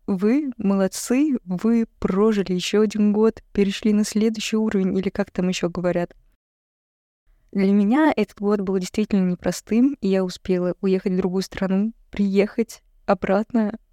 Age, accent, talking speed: 20-39, native, 140 wpm